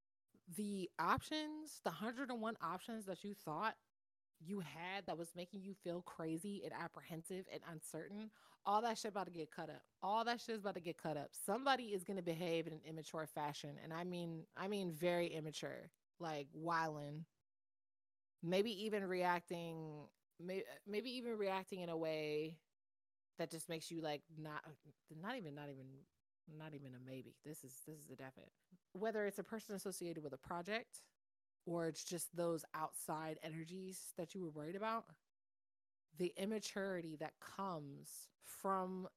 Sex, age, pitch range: female, 20-39, 155-195 Hz